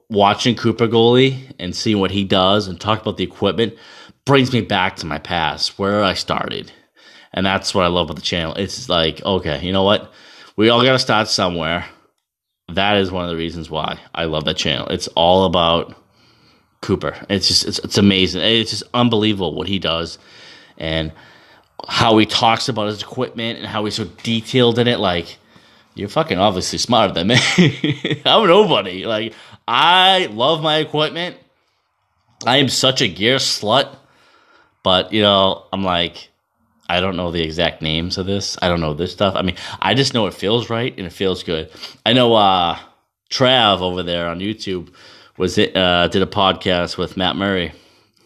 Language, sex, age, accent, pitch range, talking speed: English, male, 30-49, American, 90-110 Hz, 185 wpm